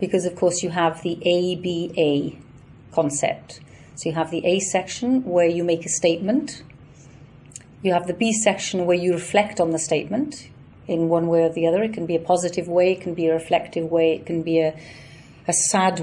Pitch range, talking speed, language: 160-195 Hz, 200 wpm, Dutch